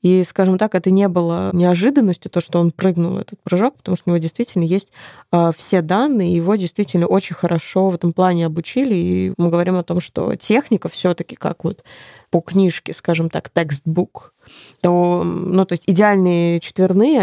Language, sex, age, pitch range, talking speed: Russian, female, 20-39, 175-195 Hz, 180 wpm